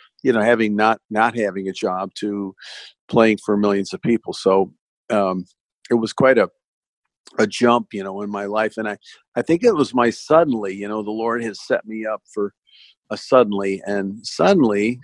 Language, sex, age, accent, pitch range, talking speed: English, male, 50-69, American, 100-115 Hz, 190 wpm